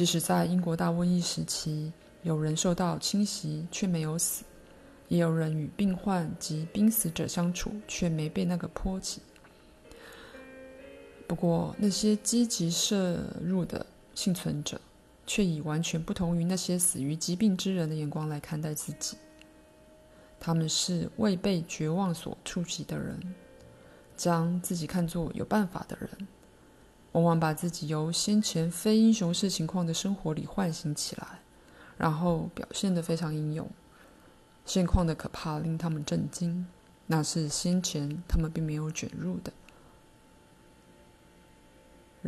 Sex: female